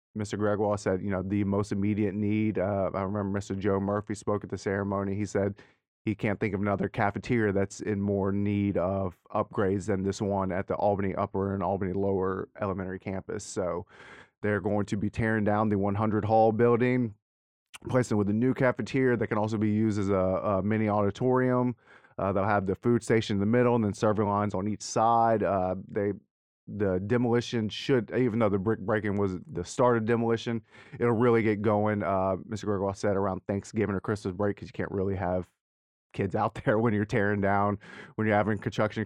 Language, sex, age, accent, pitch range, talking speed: English, male, 30-49, American, 100-110 Hz, 200 wpm